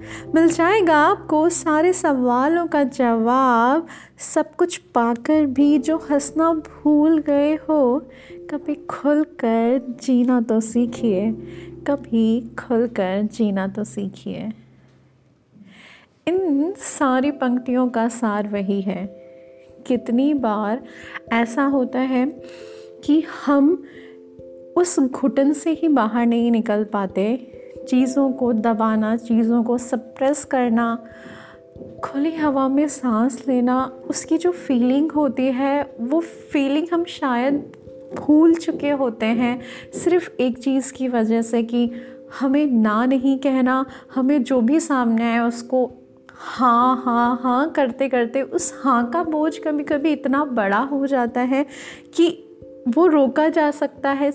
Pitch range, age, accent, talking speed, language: 235-295 Hz, 30-49, native, 125 wpm, Hindi